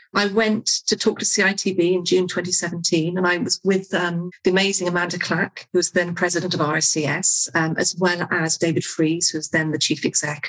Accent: British